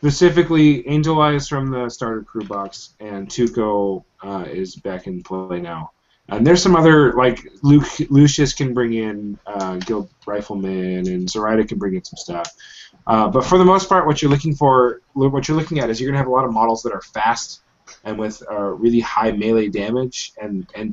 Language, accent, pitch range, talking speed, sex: English, American, 105-135 Hz, 205 wpm, male